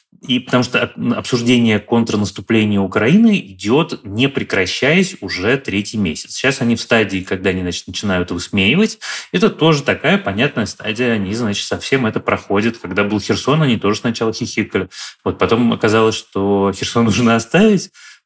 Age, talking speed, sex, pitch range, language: 20-39, 145 wpm, male, 100-135 Hz, Russian